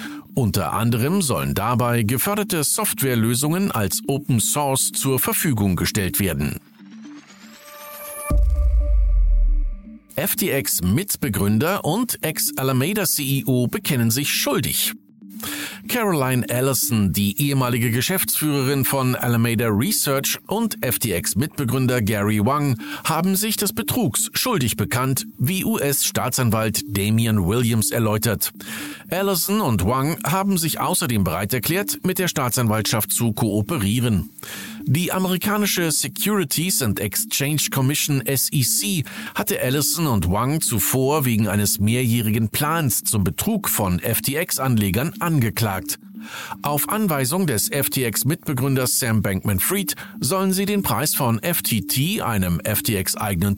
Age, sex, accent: 50-69, male, German